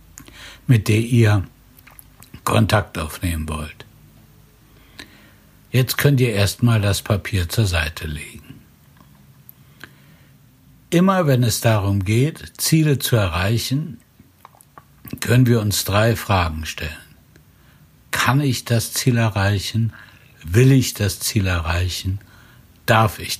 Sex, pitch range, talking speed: male, 95-130 Hz, 105 wpm